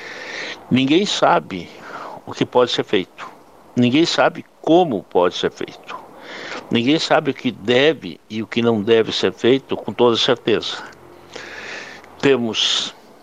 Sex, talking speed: male, 130 wpm